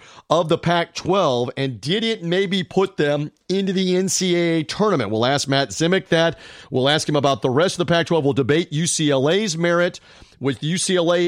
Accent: American